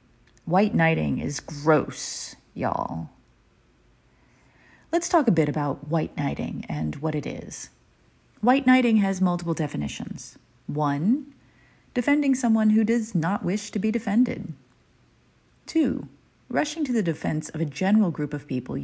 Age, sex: 40-59, female